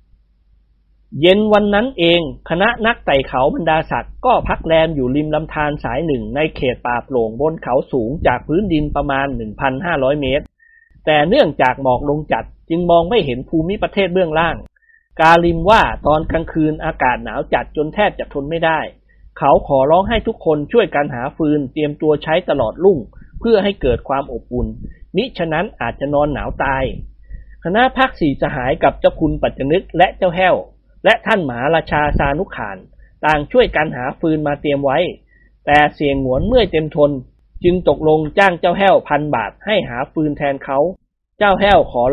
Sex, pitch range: male, 135-175 Hz